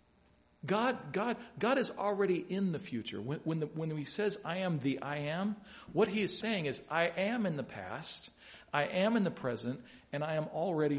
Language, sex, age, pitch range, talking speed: English, male, 50-69, 120-195 Hz, 210 wpm